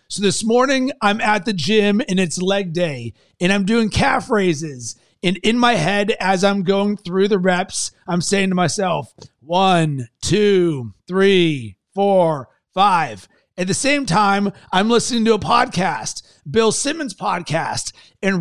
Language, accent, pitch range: English, American, 185-230 Hz